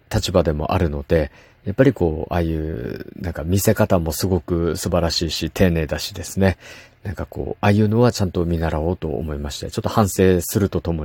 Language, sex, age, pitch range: Japanese, male, 50-69, 85-115 Hz